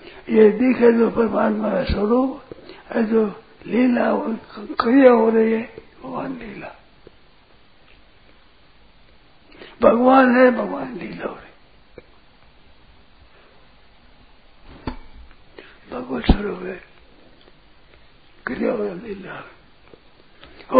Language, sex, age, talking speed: Hindi, male, 60-79, 70 wpm